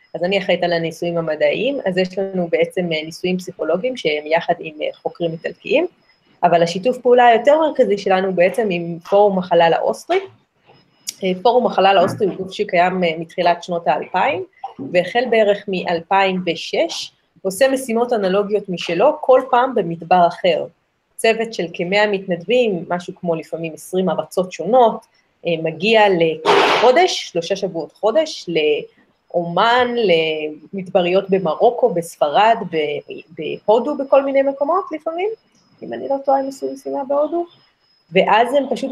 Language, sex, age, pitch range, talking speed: Hebrew, female, 30-49, 170-235 Hz, 130 wpm